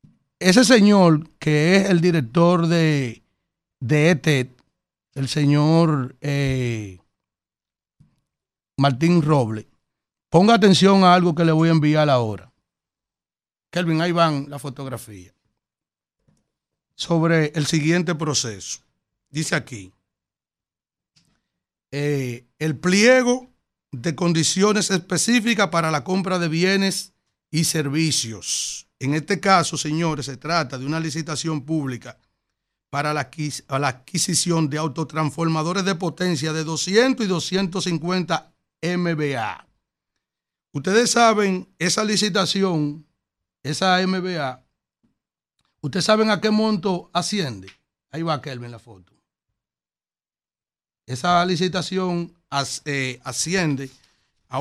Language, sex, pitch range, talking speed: Spanish, male, 140-180 Hz, 100 wpm